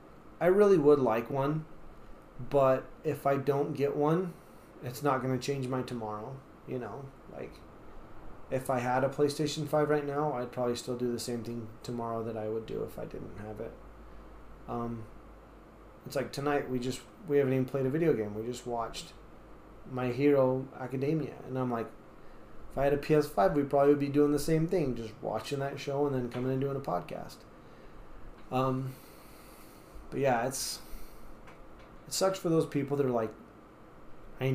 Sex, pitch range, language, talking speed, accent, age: male, 120-145 Hz, English, 180 wpm, American, 20-39